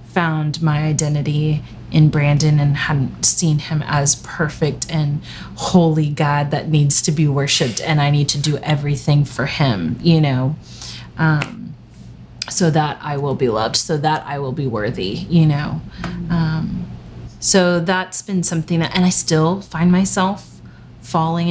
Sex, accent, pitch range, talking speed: female, American, 145-180 Hz, 155 wpm